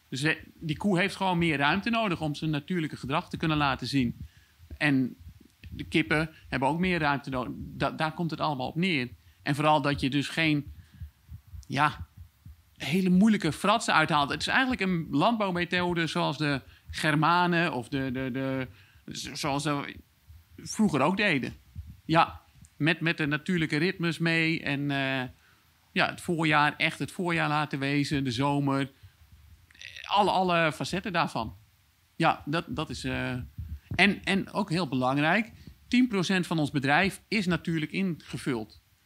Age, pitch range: 40-59, 130-165 Hz